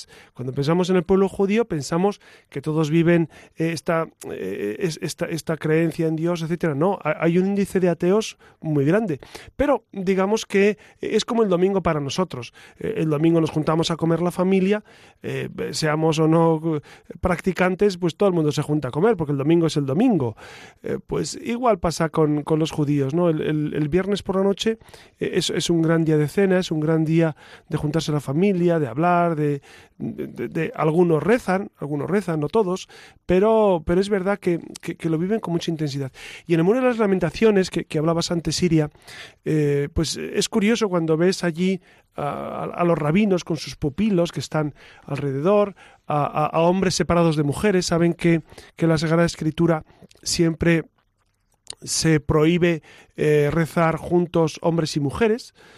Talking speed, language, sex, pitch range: 180 wpm, Spanish, male, 155-190 Hz